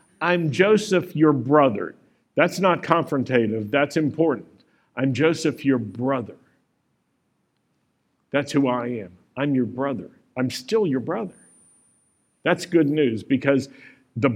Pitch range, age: 120-180 Hz, 50-69